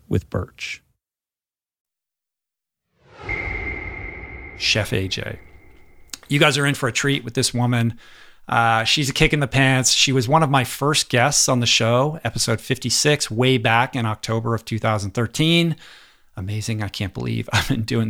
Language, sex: English, male